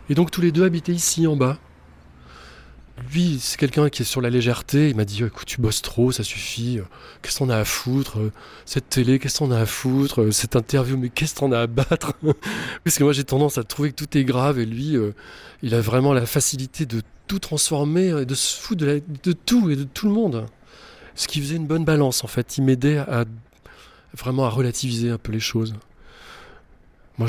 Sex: male